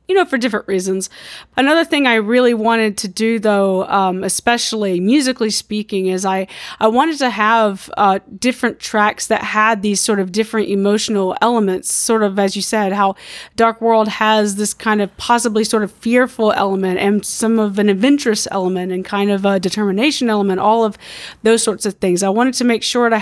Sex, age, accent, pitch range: female, 30-49, American, 205-245 Hz